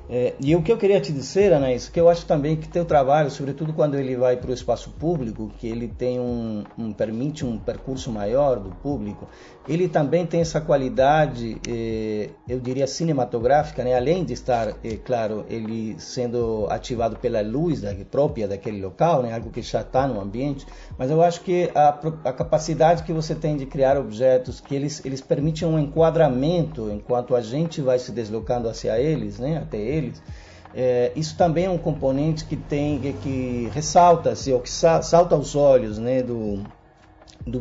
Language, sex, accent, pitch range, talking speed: Portuguese, male, Brazilian, 120-155 Hz, 190 wpm